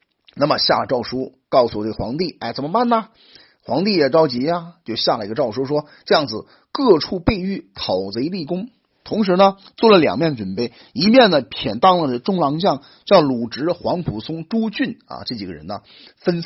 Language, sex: Chinese, male